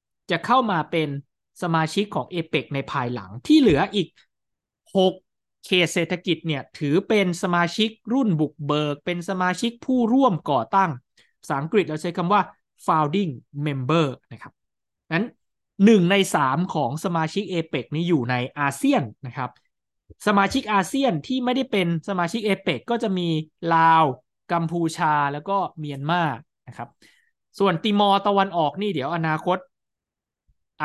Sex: male